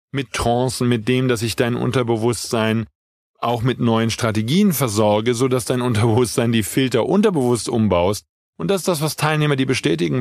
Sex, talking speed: male, 170 wpm